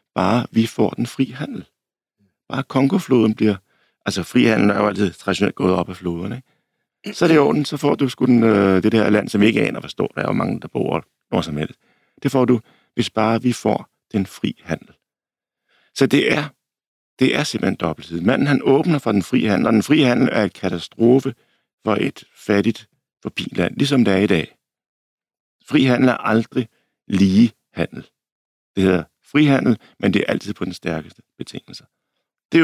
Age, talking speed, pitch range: 60-79, 185 wpm, 100-130 Hz